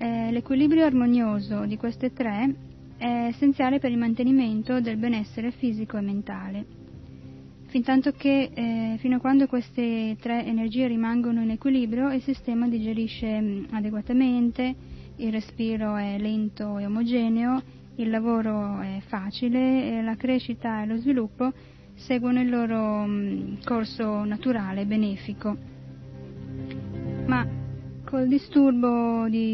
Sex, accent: female, native